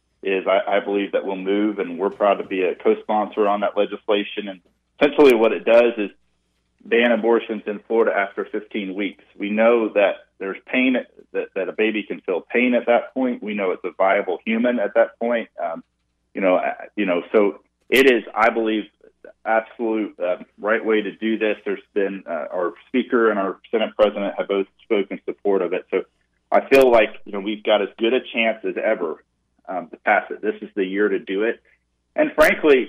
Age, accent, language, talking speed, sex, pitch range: 30-49, American, English, 210 wpm, male, 100-120 Hz